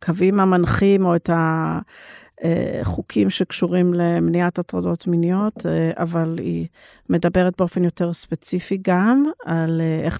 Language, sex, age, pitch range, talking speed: Hebrew, female, 50-69, 170-200 Hz, 105 wpm